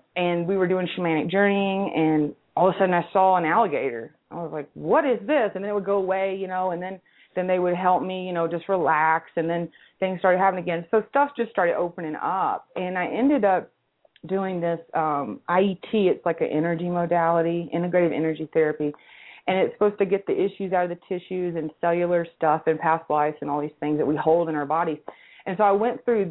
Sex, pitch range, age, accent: female, 160-195 Hz, 30-49, American